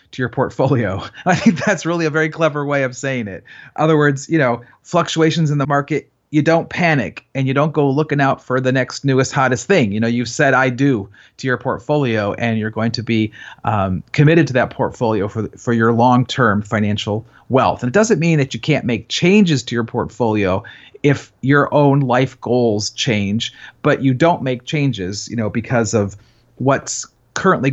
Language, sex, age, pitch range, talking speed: English, male, 40-59, 115-145 Hz, 195 wpm